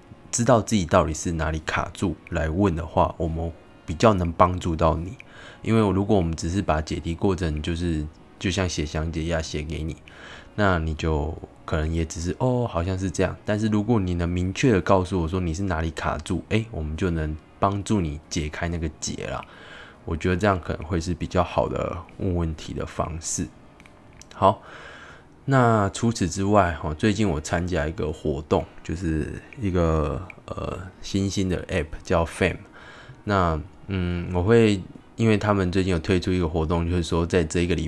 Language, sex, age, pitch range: Chinese, male, 20-39, 80-95 Hz